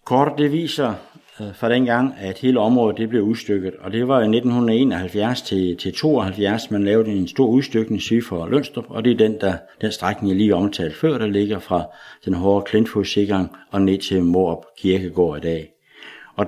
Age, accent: 60-79, native